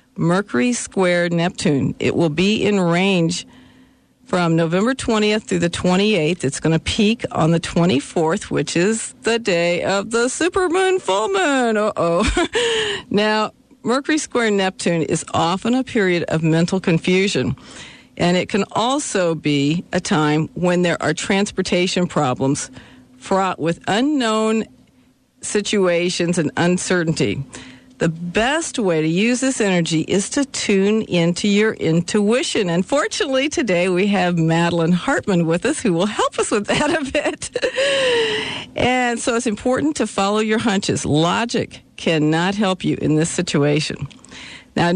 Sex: female